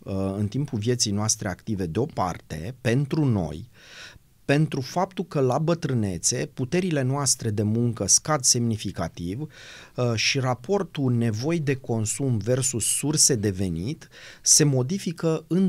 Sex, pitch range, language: male, 110-155 Hz, Romanian